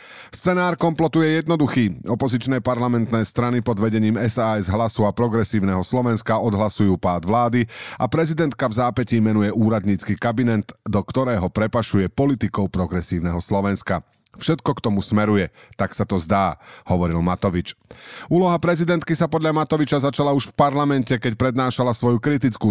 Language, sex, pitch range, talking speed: Slovak, male, 100-130 Hz, 135 wpm